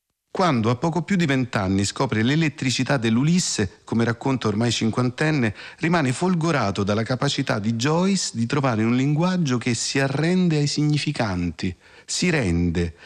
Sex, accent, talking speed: male, native, 140 wpm